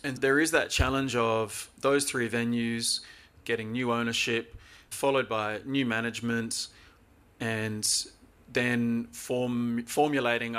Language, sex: English, male